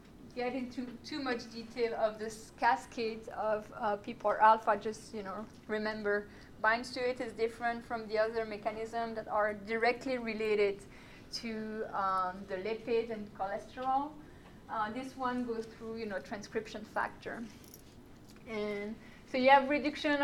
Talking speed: 145 wpm